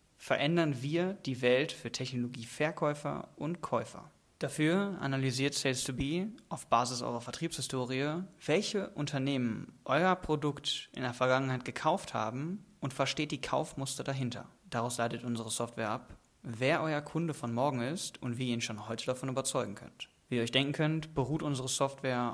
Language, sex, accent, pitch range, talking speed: German, male, German, 120-150 Hz, 155 wpm